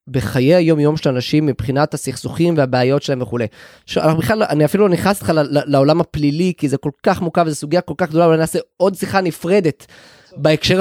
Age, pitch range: 20-39, 140-185 Hz